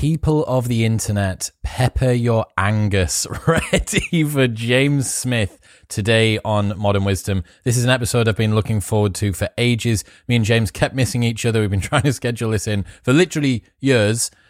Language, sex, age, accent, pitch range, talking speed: English, male, 20-39, British, 105-140 Hz, 180 wpm